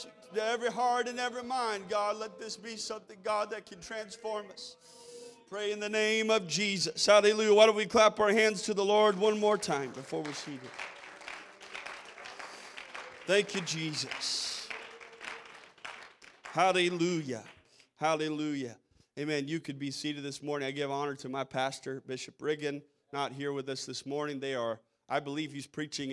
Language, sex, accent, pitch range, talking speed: English, male, American, 130-190 Hz, 160 wpm